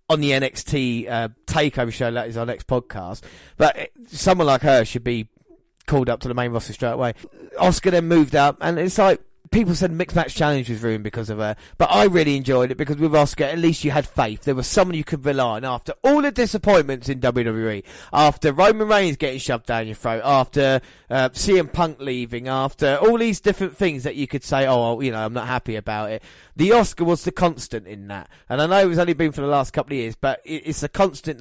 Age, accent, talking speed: 30-49, British, 235 wpm